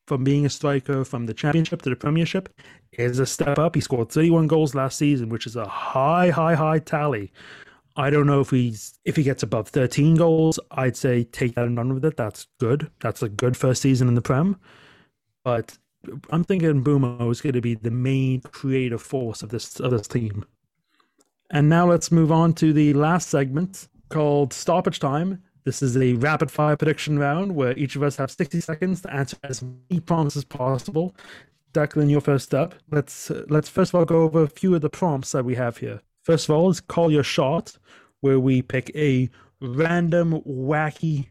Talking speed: 200 wpm